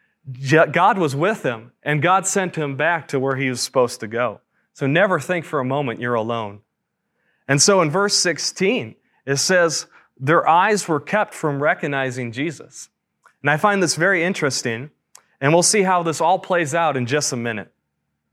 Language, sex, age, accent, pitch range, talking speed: English, male, 30-49, American, 130-175 Hz, 185 wpm